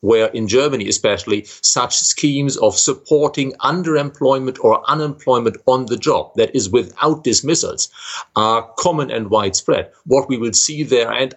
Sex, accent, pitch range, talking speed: male, German, 115-150 Hz, 150 wpm